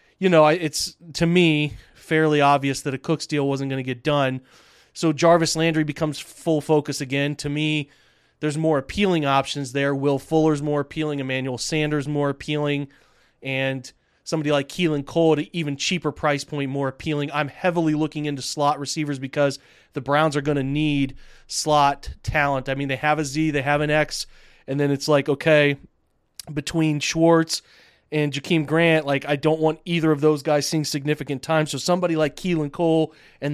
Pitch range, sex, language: 140-155 Hz, male, English